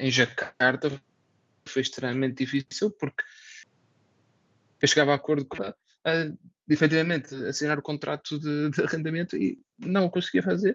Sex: male